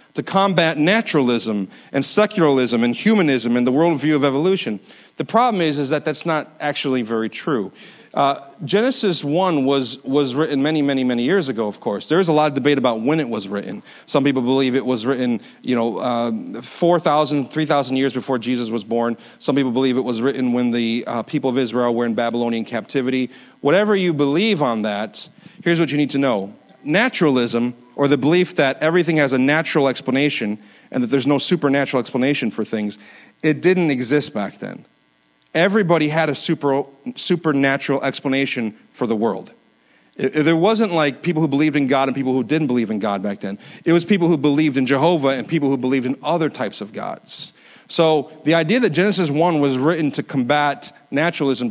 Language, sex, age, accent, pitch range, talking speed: English, male, 40-59, American, 125-160 Hz, 190 wpm